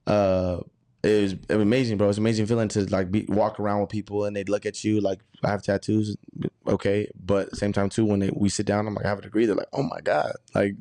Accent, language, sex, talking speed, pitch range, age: American, English, male, 280 wpm, 100-120 Hz, 20-39